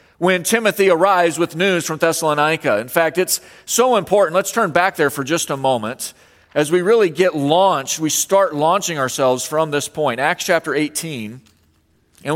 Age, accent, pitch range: 40-59, American, 150-195 Hz